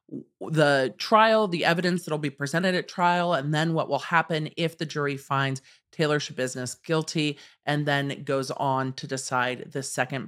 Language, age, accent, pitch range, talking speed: English, 40-59, American, 130-160 Hz, 170 wpm